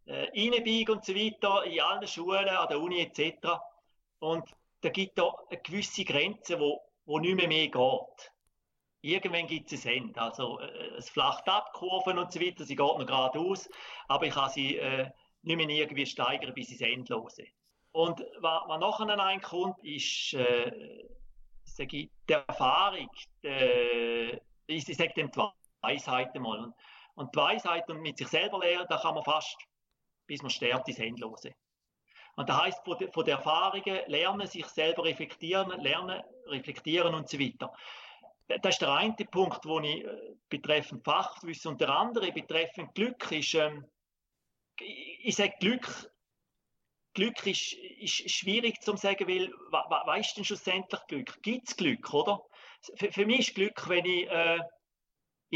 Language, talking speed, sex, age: German, 160 wpm, male, 40-59